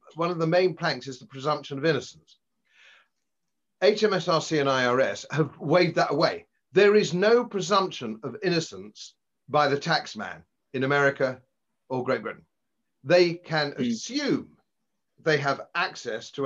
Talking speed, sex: 140 wpm, male